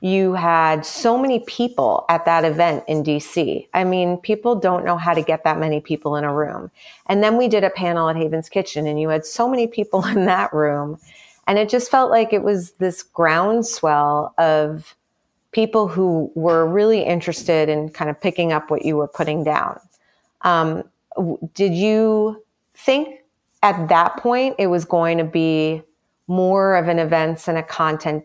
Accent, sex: American, female